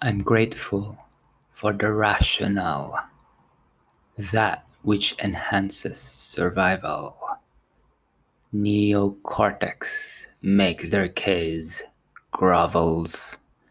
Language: English